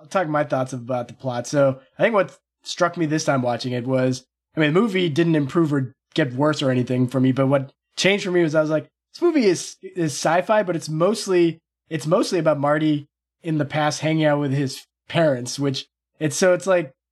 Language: English